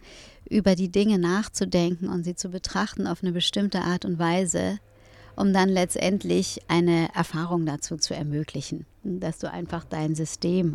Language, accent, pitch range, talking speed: German, German, 165-195 Hz, 150 wpm